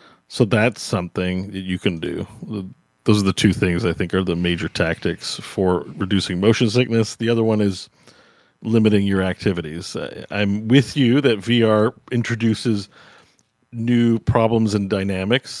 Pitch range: 95-115 Hz